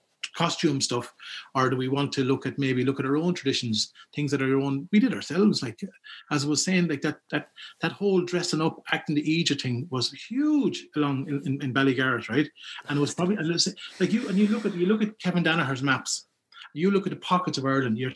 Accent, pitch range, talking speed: Irish, 130-170 Hz, 235 wpm